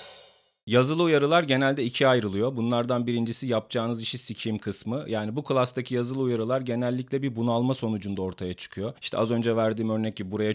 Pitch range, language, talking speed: 115-140 Hz, Turkish, 165 wpm